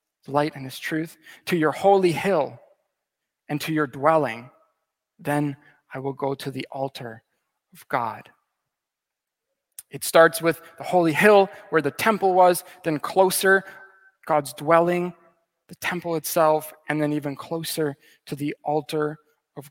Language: English